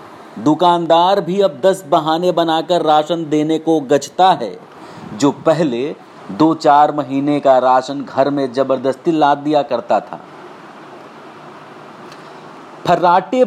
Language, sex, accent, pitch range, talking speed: Hindi, male, native, 155-195 Hz, 115 wpm